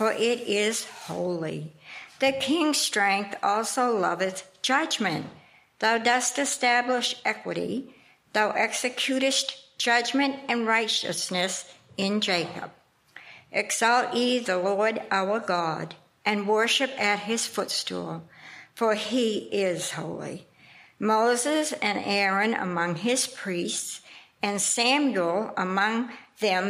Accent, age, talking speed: American, 60-79, 105 wpm